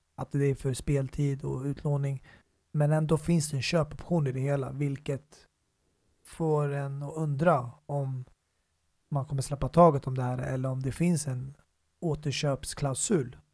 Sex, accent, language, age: male, native, Swedish, 30-49